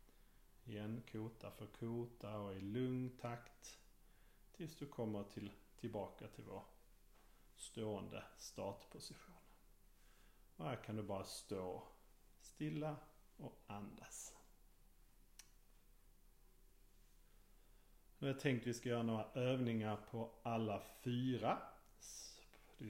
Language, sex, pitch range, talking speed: Swedish, male, 105-125 Hz, 100 wpm